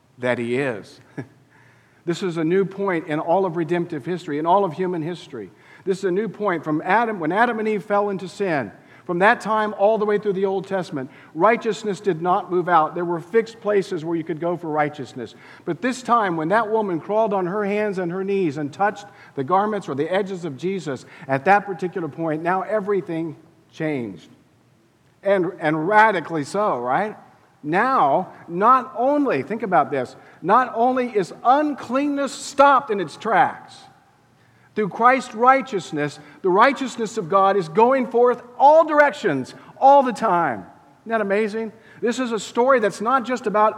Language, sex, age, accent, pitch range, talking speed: English, male, 50-69, American, 170-235 Hz, 180 wpm